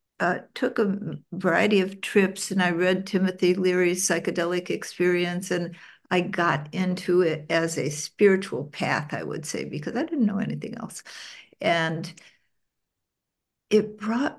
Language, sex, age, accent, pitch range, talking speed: English, female, 60-79, American, 175-210 Hz, 140 wpm